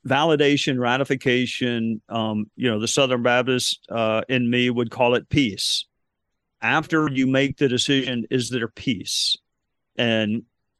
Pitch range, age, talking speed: 125-155 Hz, 50-69, 135 wpm